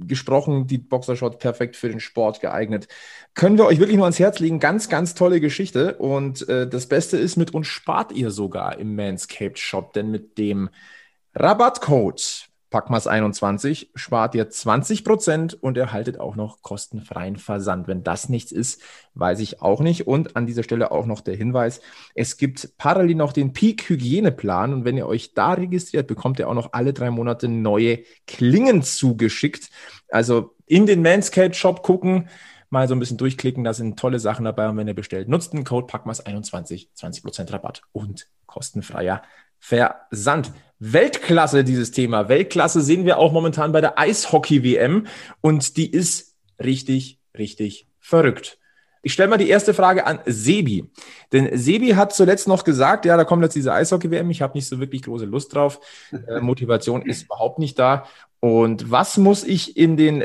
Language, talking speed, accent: German, 170 wpm, German